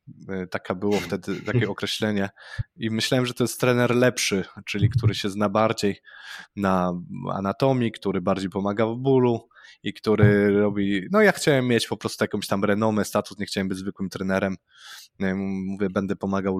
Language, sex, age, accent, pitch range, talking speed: Polish, male, 20-39, native, 100-125 Hz, 165 wpm